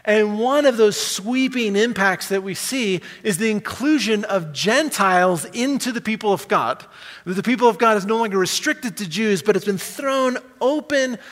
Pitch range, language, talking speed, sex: 175-230 Hz, English, 180 wpm, male